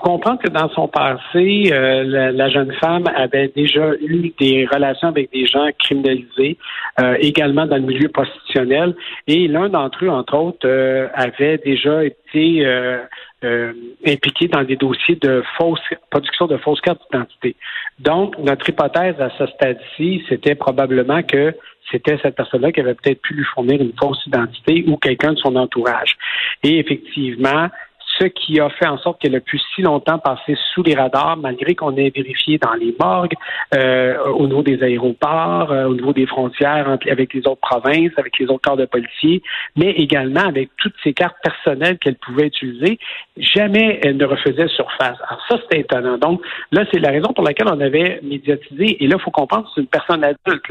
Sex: male